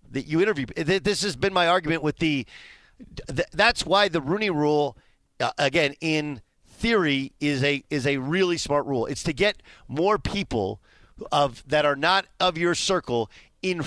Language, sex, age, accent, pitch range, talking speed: English, male, 40-59, American, 140-185 Hz, 175 wpm